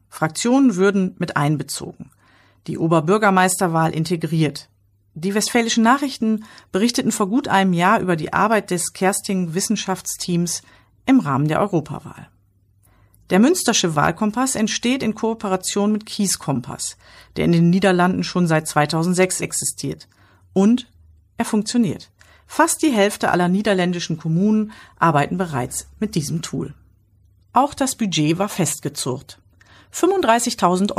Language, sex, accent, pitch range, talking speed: German, female, German, 150-215 Hz, 120 wpm